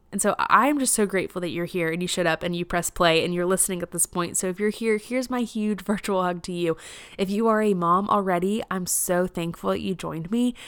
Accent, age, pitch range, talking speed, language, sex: American, 20-39, 175-195 Hz, 265 wpm, English, female